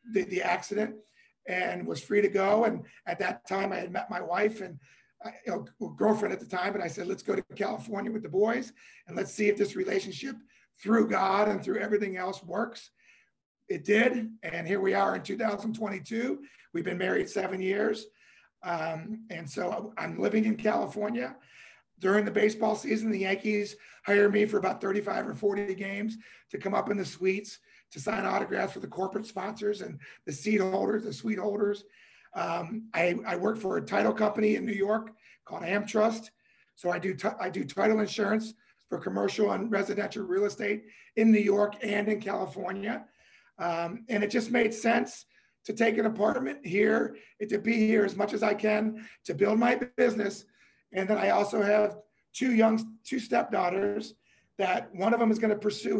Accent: American